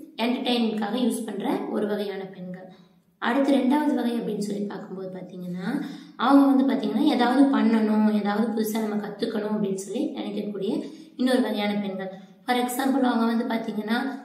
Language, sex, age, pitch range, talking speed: Tamil, female, 20-39, 205-255 Hz, 140 wpm